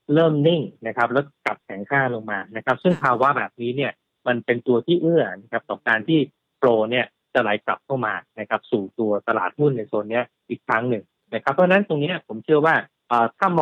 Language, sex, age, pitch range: Thai, male, 20-39, 115-145 Hz